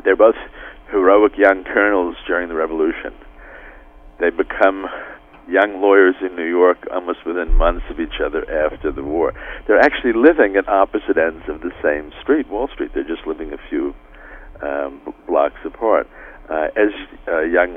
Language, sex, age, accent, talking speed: English, male, 50-69, American, 160 wpm